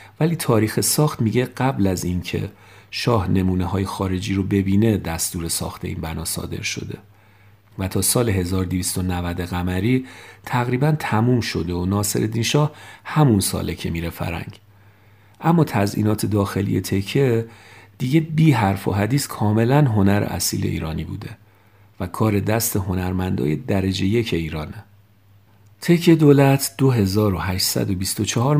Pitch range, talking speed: 95-115 Hz, 125 wpm